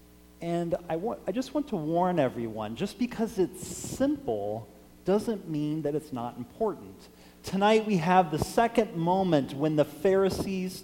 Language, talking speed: English, 150 wpm